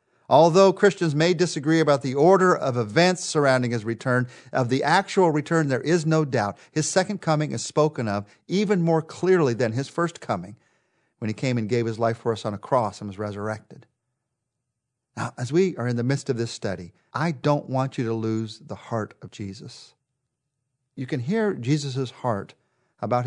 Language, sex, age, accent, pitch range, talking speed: English, male, 50-69, American, 115-155 Hz, 190 wpm